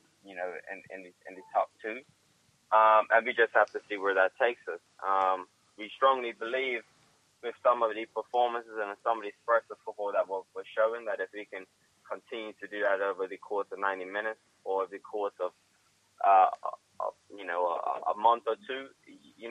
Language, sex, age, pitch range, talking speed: English, male, 20-39, 95-120 Hz, 205 wpm